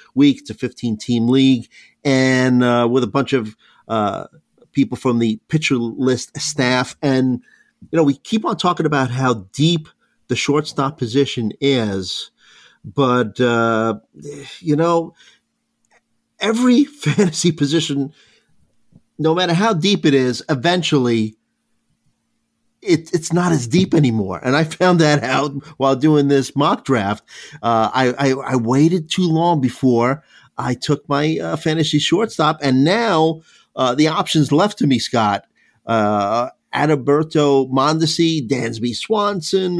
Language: English